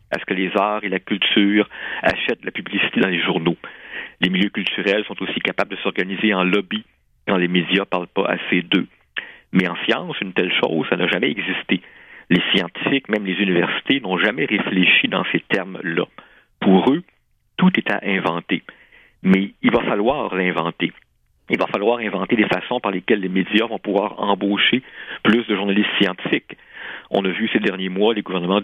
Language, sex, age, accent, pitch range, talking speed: French, male, 50-69, French, 95-105 Hz, 190 wpm